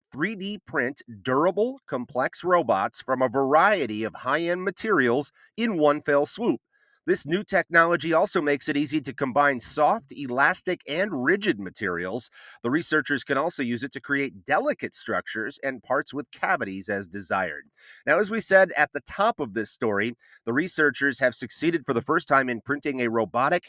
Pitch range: 125-175 Hz